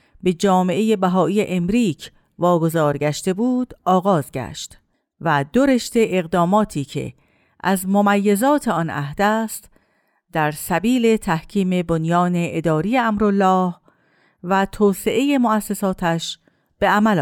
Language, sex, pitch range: Persian, female, 170-220 Hz